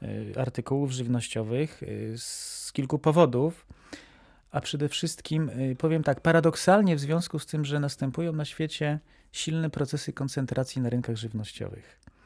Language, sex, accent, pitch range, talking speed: Polish, male, native, 125-150 Hz, 120 wpm